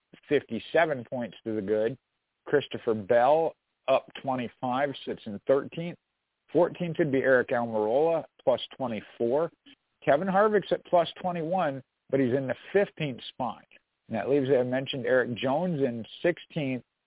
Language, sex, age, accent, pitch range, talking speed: English, male, 50-69, American, 130-170 Hz, 140 wpm